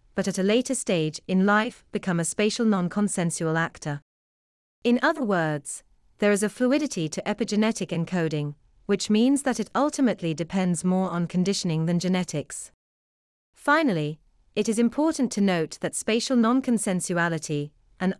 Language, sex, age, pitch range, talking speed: English, female, 30-49, 160-225 Hz, 140 wpm